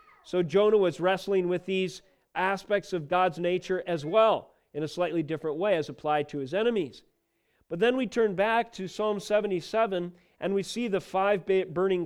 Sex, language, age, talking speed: male, English, 40-59, 180 wpm